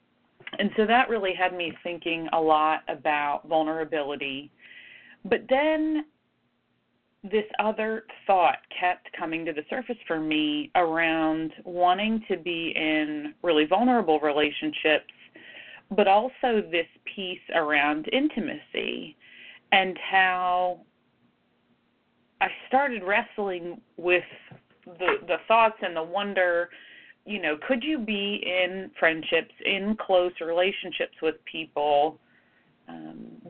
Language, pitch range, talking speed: English, 160-210 Hz, 110 wpm